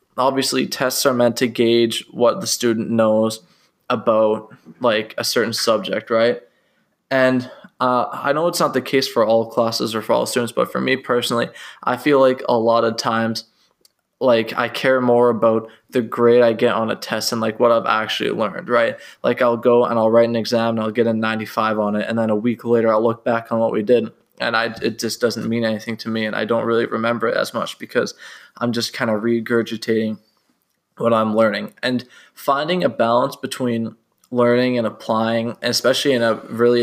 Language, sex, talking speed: English, male, 205 wpm